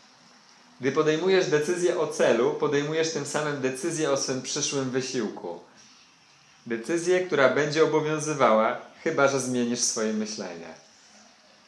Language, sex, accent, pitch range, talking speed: English, male, Polish, 125-155 Hz, 115 wpm